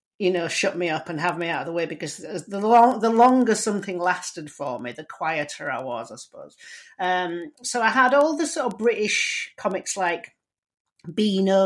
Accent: British